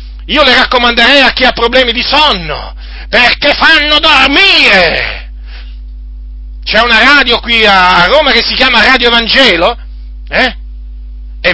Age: 40-59